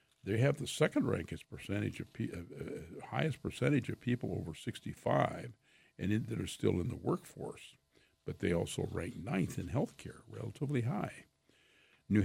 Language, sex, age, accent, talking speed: English, male, 60-79, American, 170 wpm